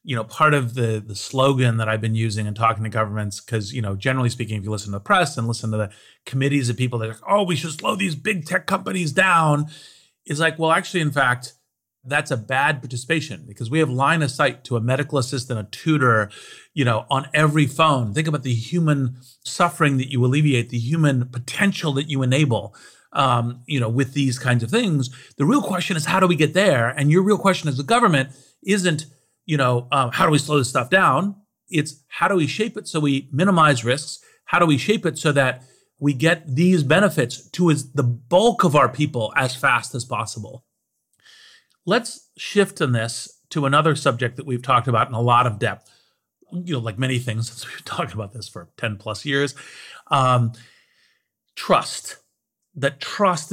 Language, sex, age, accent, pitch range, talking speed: English, male, 40-59, American, 120-160 Hz, 205 wpm